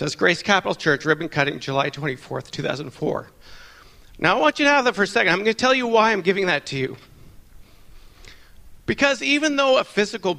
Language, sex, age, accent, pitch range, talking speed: English, male, 50-69, American, 150-215 Hz, 200 wpm